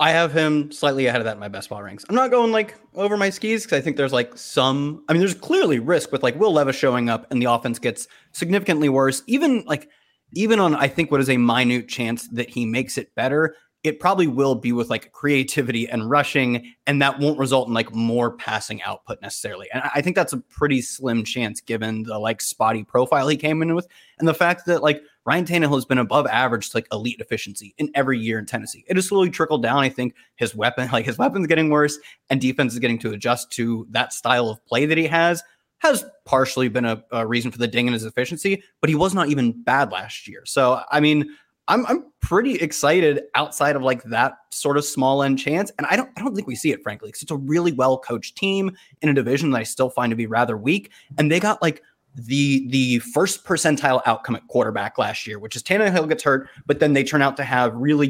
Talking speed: 235 wpm